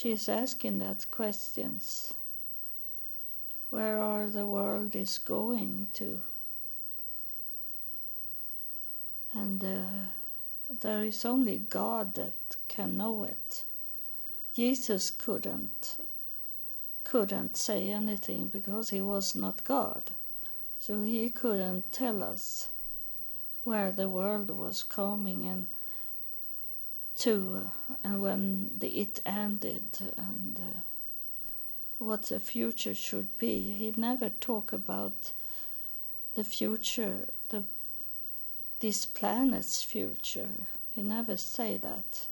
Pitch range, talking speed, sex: 195-230 Hz, 100 wpm, female